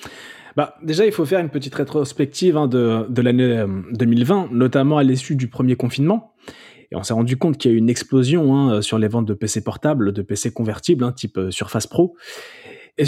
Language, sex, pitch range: French, male, 115-150 Hz